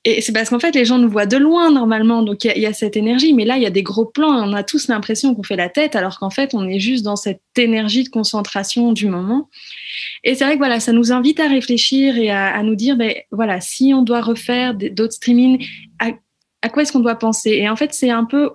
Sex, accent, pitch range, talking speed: female, French, 205-255 Hz, 270 wpm